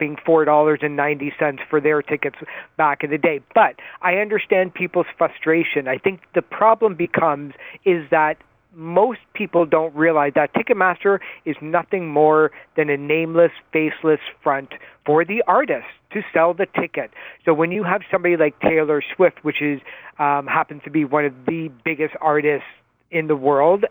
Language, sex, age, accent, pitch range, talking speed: English, male, 40-59, American, 150-175 Hz, 160 wpm